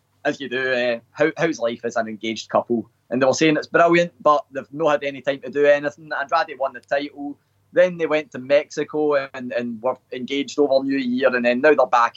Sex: male